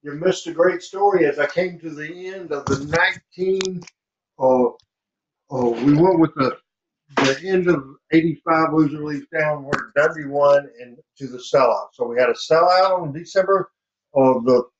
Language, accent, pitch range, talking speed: English, American, 125-160 Hz, 160 wpm